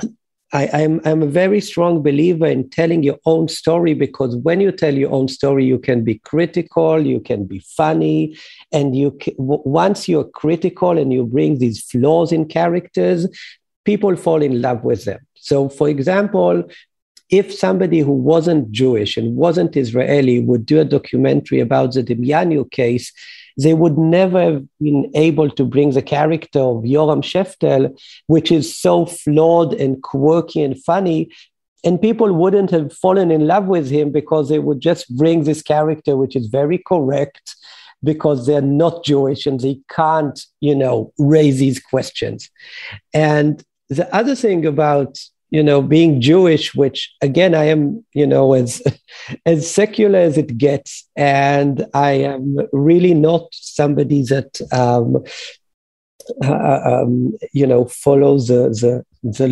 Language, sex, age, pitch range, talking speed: English, male, 50-69, 135-165 Hz, 155 wpm